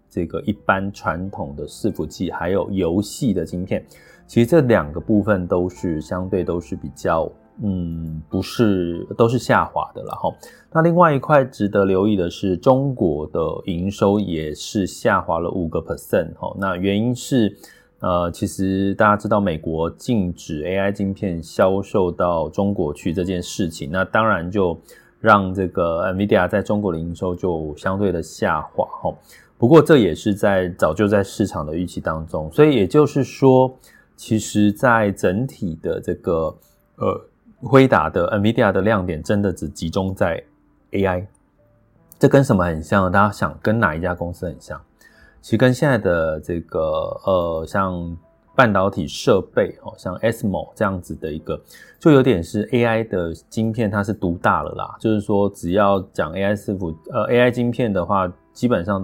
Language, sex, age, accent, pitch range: Chinese, male, 20-39, native, 85-110 Hz